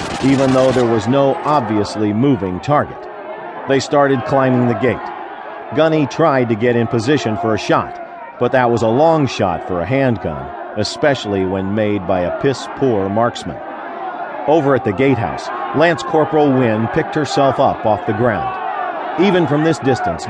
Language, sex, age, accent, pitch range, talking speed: English, male, 50-69, American, 115-140 Hz, 165 wpm